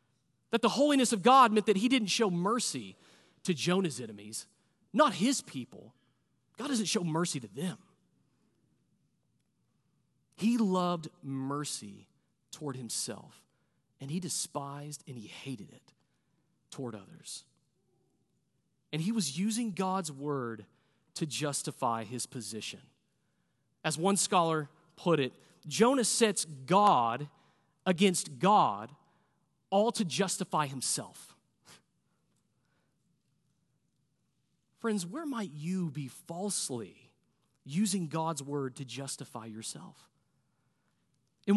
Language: English